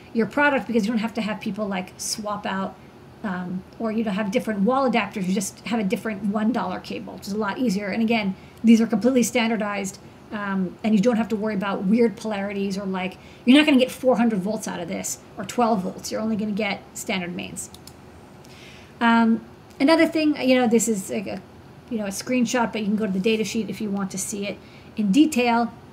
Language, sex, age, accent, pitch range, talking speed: English, female, 30-49, American, 210-245 Hz, 230 wpm